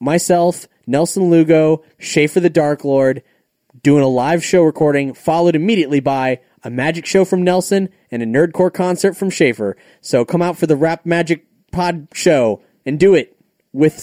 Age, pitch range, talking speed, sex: 30-49, 115-165 Hz, 165 wpm, male